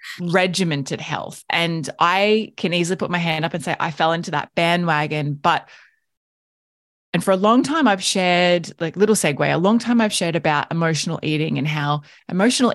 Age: 20-39